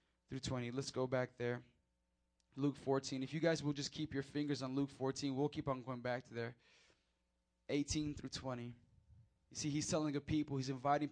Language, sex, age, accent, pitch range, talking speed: English, male, 20-39, American, 125-185 Hz, 200 wpm